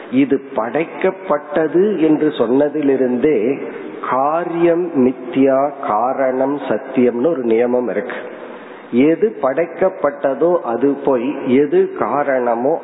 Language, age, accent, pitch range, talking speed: Tamil, 50-69, native, 130-165 Hz, 70 wpm